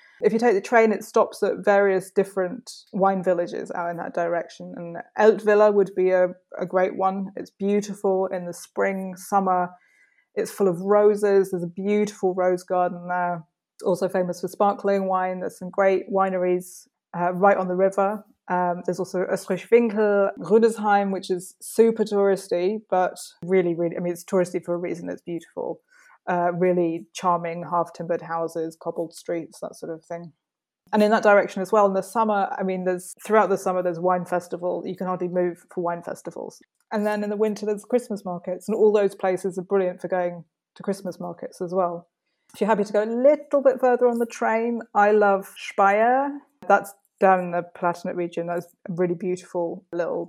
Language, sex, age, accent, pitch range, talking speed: English, female, 20-39, British, 180-210 Hz, 190 wpm